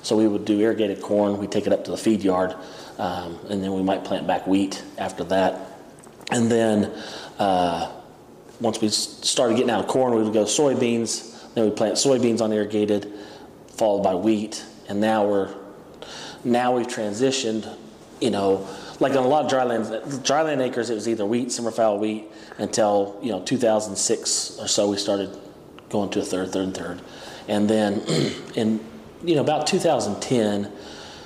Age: 30-49